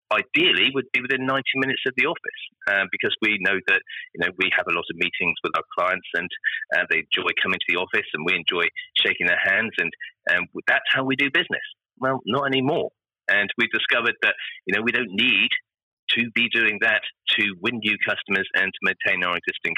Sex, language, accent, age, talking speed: male, English, British, 30-49, 215 wpm